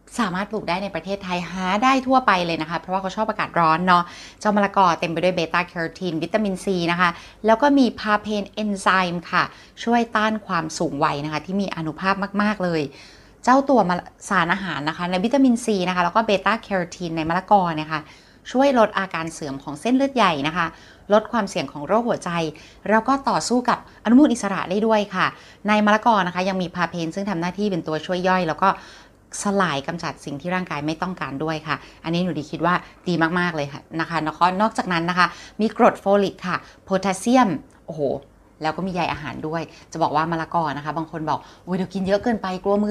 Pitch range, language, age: 160-205 Hz, Thai, 20-39